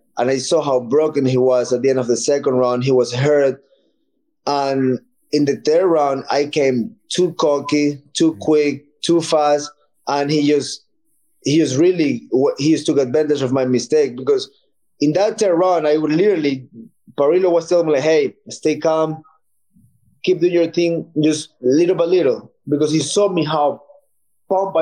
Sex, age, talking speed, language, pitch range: male, 20-39, 175 wpm, English, 135-170 Hz